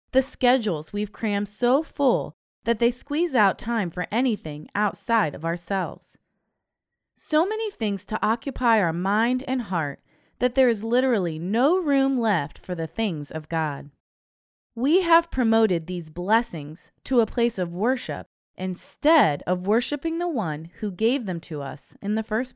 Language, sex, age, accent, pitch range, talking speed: English, female, 20-39, American, 170-255 Hz, 160 wpm